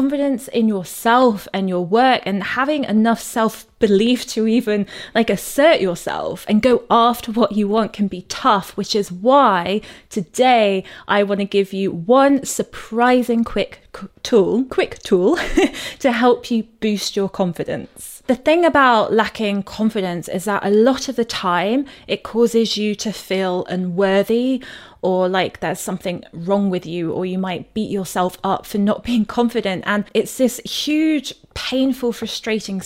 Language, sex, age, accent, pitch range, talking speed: English, female, 20-39, British, 195-245 Hz, 160 wpm